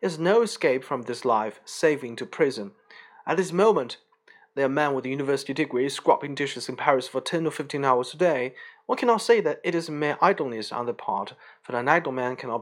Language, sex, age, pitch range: Chinese, male, 40-59, 125-175 Hz